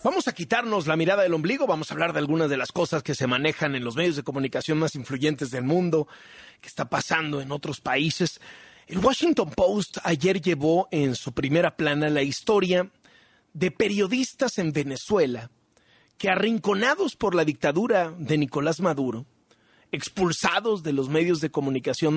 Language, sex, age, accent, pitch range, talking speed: Spanish, male, 40-59, Mexican, 155-230 Hz, 170 wpm